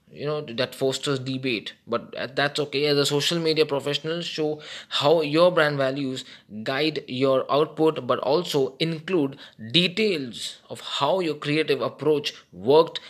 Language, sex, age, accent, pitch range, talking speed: English, male, 20-39, Indian, 130-155 Hz, 140 wpm